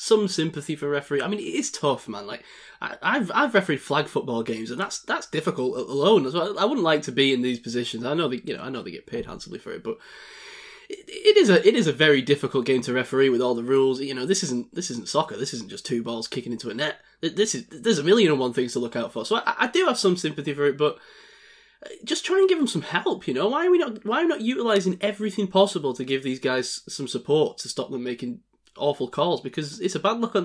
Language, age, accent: English, 10-29, British